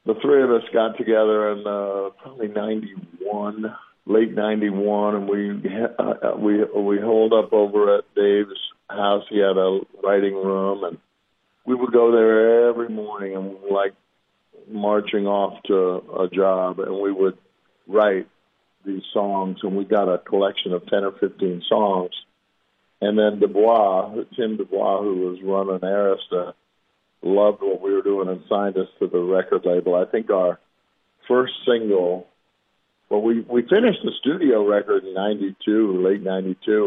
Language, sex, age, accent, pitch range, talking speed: English, male, 50-69, American, 95-105 Hz, 160 wpm